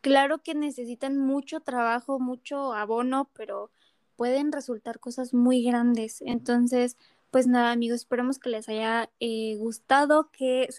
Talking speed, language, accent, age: 140 wpm, Spanish, Mexican, 20-39